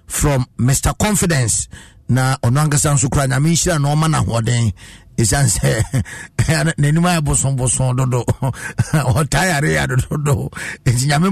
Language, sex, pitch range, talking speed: English, male, 120-160 Hz, 135 wpm